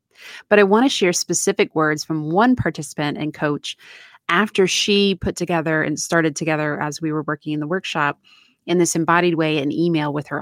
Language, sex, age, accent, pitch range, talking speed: English, female, 30-49, American, 155-190 Hz, 195 wpm